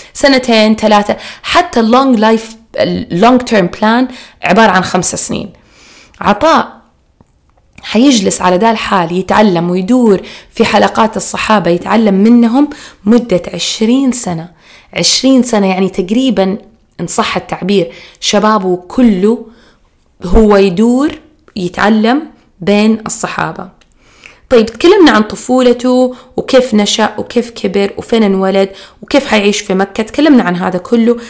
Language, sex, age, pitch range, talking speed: Arabic, female, 20-39, 195-245 Hz, 110 wpm